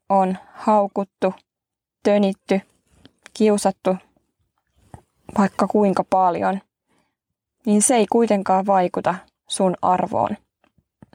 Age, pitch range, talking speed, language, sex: 20-39, 185-210 Hz, 75 wpm, Finnish, female